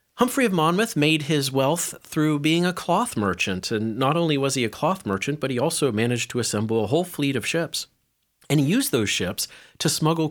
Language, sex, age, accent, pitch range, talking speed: English, male, 40-59, American, 110-150 Hz, 215 wpm